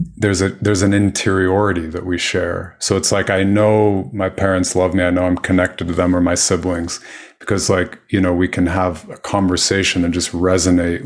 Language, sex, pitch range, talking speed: English, male, 90-105 Hz, 205 wpm